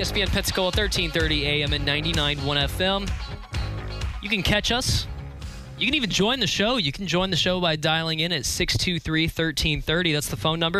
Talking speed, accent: 170 wpm, American